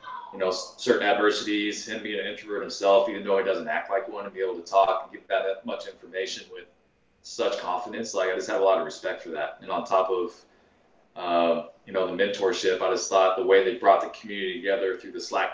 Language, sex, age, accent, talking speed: English, male, 20-39, American, 235 wpm